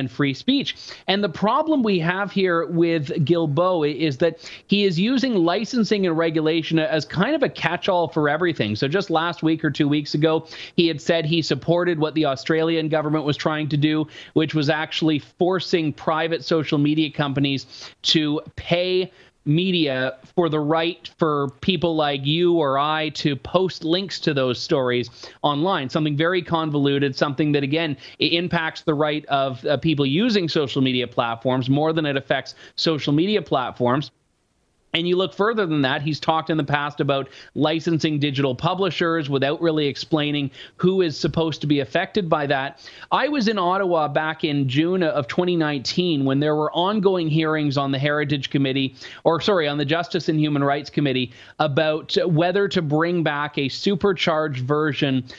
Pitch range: 145-175 Hz